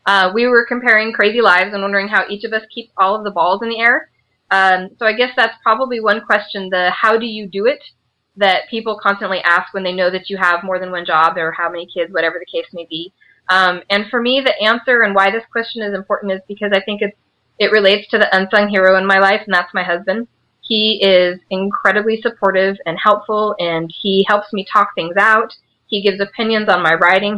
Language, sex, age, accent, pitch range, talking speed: English, female, 20-39, American, 180-215 Hz, 230 wpm